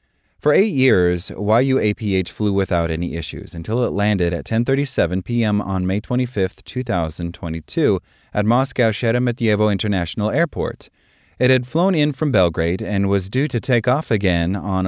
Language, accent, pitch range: English, American, 90-110 Hz